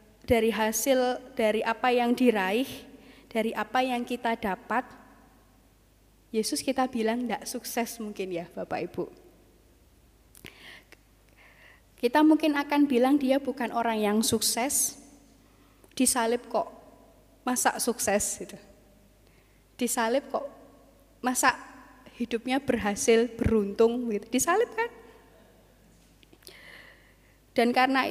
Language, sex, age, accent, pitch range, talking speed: Indonesian, female, 20-39, native, 230-280 Hz, 95 wpm